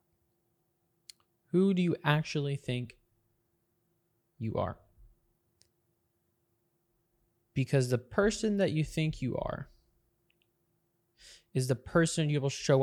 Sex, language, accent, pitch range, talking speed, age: male, English, American, 115-160 Hz, 100 wpm, 20-39